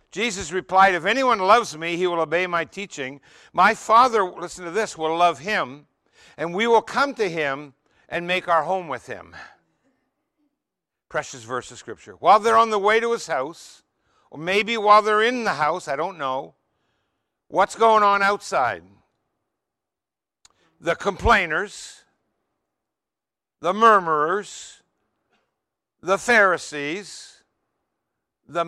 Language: English